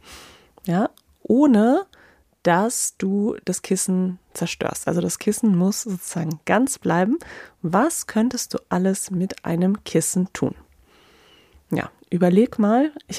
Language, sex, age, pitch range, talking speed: German, female, 30-49, 170-210 Hz, 120 wpm